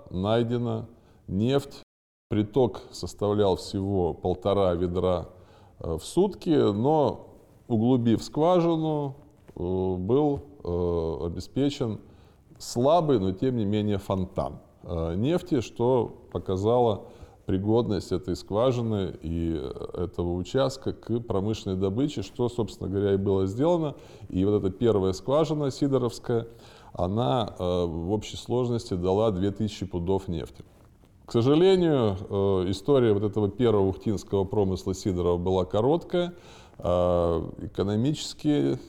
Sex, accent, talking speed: male, native, 100 wpm